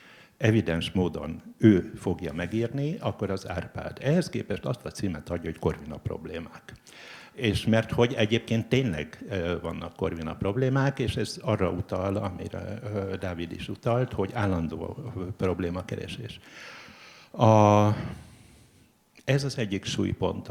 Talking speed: 125 wpm